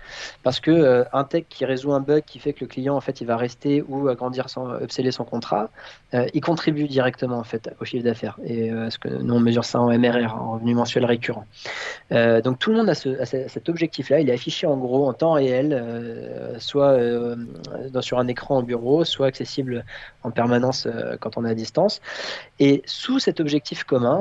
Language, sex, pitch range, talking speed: French, male, 120-150 Hz, 195 wpm